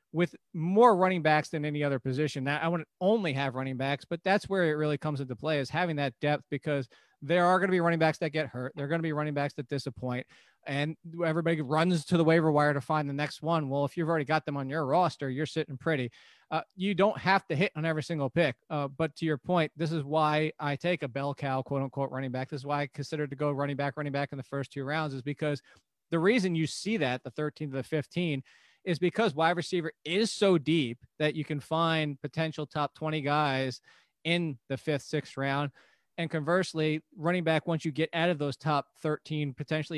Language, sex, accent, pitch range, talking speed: English, male, American, 140-170 Hz, 240 wpm